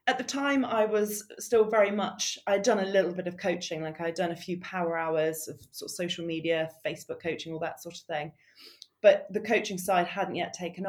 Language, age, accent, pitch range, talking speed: English, 20-39, British, 170-200 Hz, 225 wpm